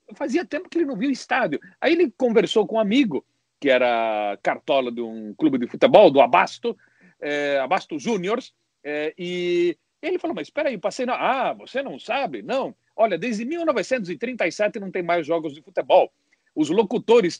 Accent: Brazilian